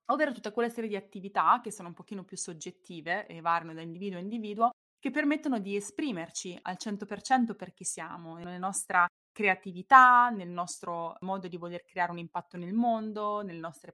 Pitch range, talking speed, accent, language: 175-225 Hz, 180 wpm, native, Italian